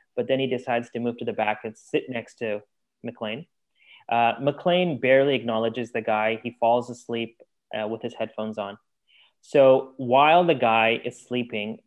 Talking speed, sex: 170 wpm, male